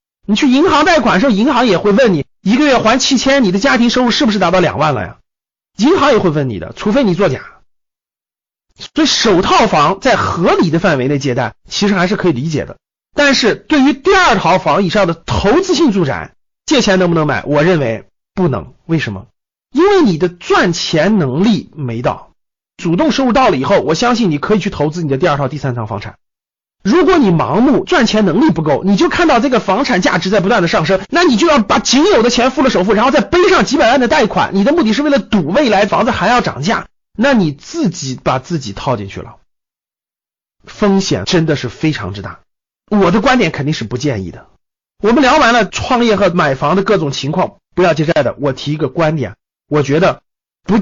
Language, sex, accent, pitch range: Chinese, male, native, 145-245 Hz